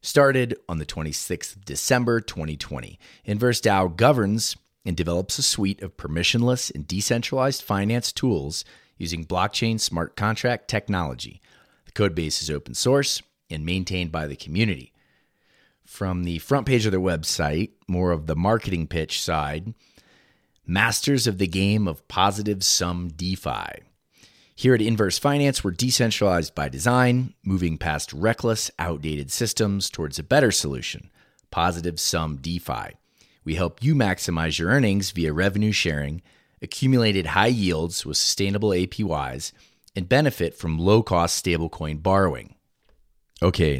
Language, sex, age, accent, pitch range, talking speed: English, male, 30-49, American, 85-115 Hz, 135 wpm